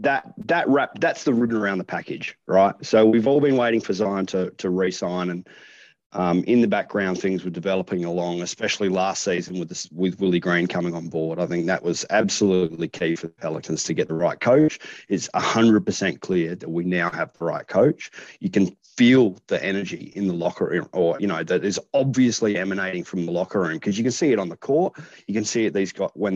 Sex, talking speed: male, 230 wpm